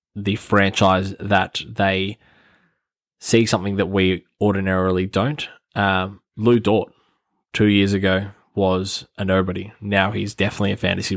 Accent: Australian